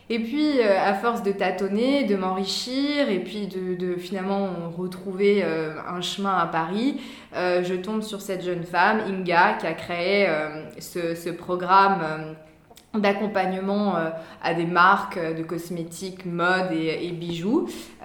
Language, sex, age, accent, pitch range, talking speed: French, female, 20-39, French, 170-205 Hz, 135 wpm